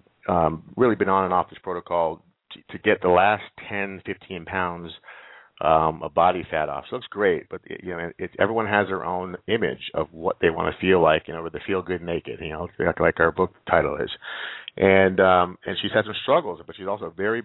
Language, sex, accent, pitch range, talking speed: English, male, American, 80-95 Hz, 235 wpm